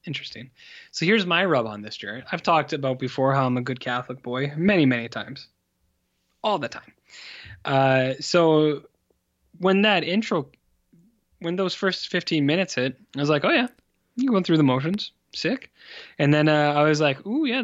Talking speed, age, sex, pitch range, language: 185 wpm, 20-39, male, 125-180 Hz, English